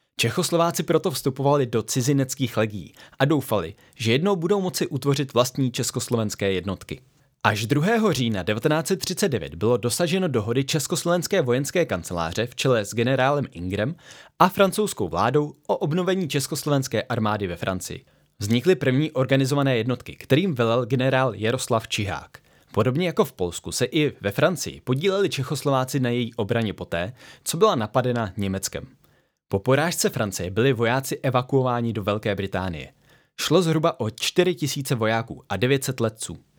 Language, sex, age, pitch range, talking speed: Czech, male, 20-39, 110-150 Hz, 140 wpm